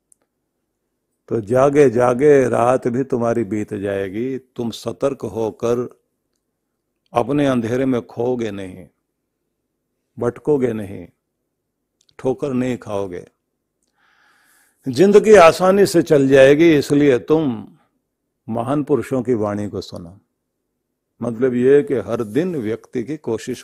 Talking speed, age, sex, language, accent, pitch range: 105 wpm, 50-69, male, Hindi, native, 110-150 Hz